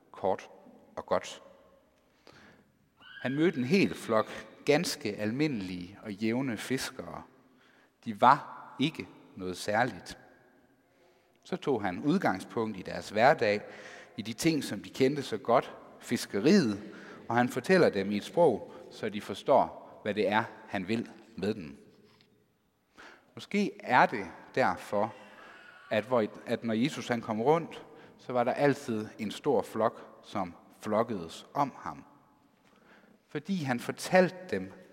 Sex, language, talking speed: male, Danish, 130 wpm